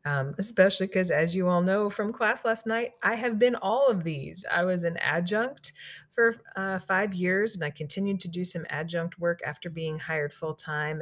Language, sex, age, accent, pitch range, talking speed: English, female, 30-49, American, 145-180 Hz, 200 wpm